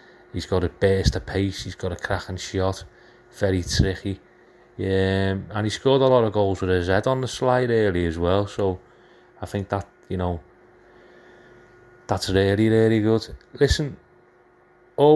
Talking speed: 165 wpm